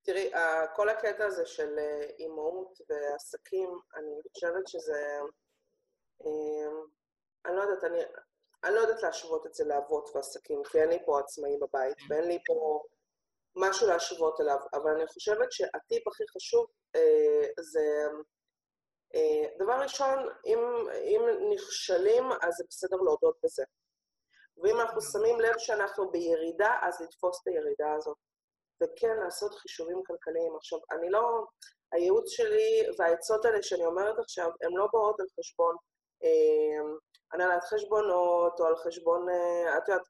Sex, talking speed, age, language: female, 135 wpm, 30-49, Hebrew